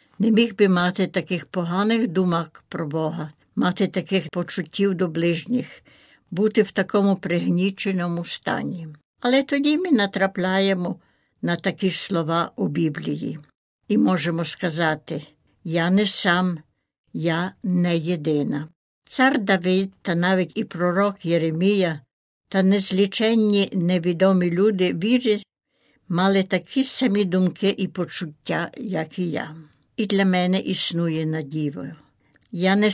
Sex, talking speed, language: female, 120 wpm, Ukrainian